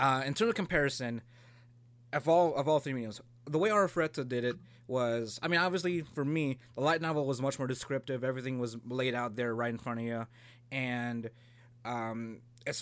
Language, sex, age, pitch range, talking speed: English, male, 20-39, 120-145 Hz, 190 wpm